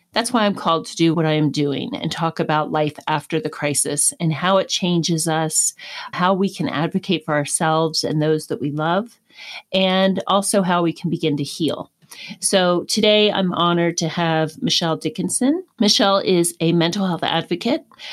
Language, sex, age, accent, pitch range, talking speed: English, female, 40-59, American, 160-195 Hz, 180 wpm